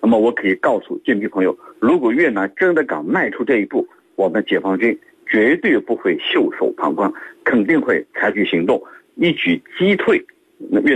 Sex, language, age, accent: male, Chinese, 50-69, native